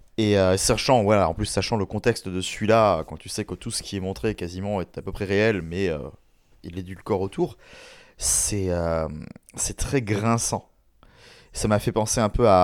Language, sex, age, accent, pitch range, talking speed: French, male, 30-49, French, 90-110 Hz, 220 wpm